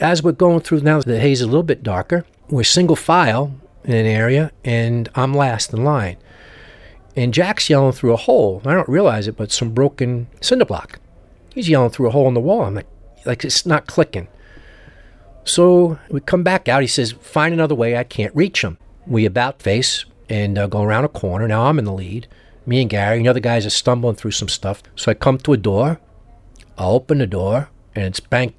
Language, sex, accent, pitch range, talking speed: English, male, American, 100-130 Hz, 220 wpm